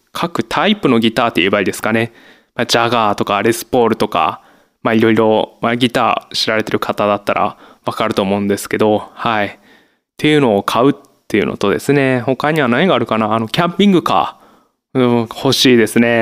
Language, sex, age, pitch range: Japanese, male, 20-39, 115-150 Hz